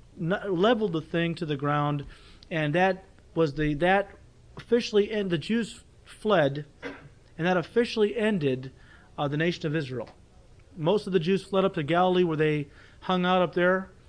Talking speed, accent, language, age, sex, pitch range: 165 wpm, American, English, 40-59, male, 140-185 Hz